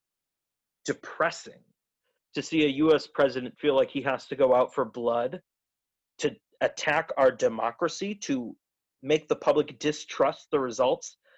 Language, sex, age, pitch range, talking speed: English, male, 30-49, 125-180 Hz, 135 wpm